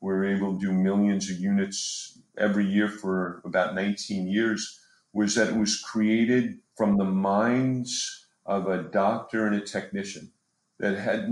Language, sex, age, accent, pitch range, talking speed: English, male, 50-69, American, 95-110 Hz, 155 wpm